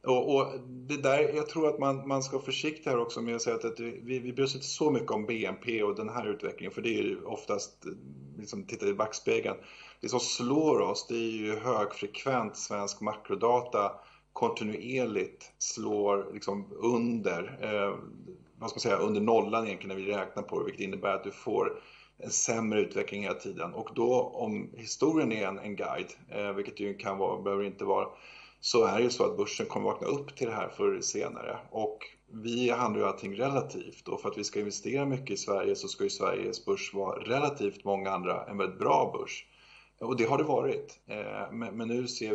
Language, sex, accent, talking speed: English, male, Swedish, 205 wpm